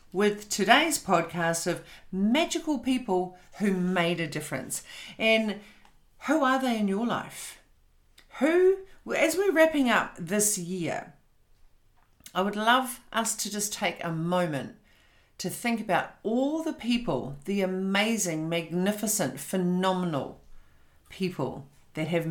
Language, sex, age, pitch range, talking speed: English, female, 50-69, 155-210 Hz, 125 wpm